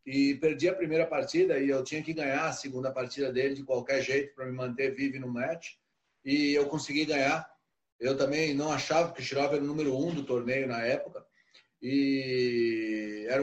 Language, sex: Portuguese, male